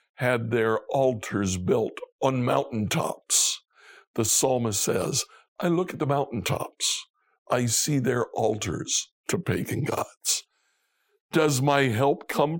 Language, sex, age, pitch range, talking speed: English, male, 60-79, 115-145 Hz, 120 wpm